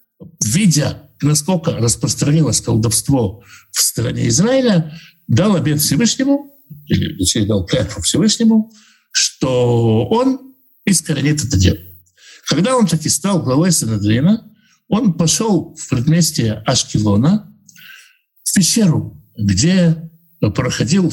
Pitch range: 110-170 Hz